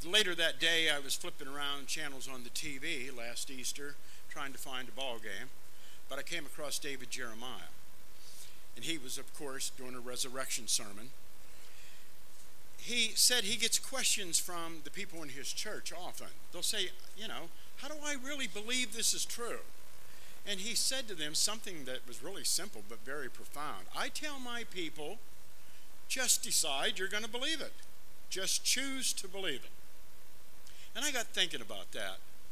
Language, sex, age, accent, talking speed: English, male, 50-69, American, 170 wpm